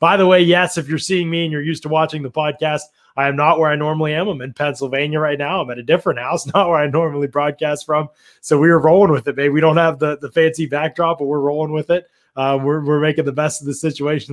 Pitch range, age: 135-160 Hz, 20-39